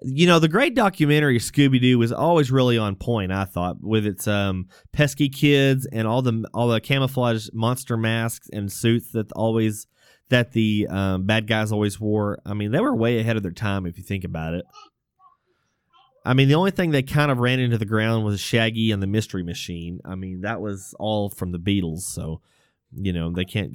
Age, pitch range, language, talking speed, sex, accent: 20-39, 105-140 Hz, English, 205 wpm, male, American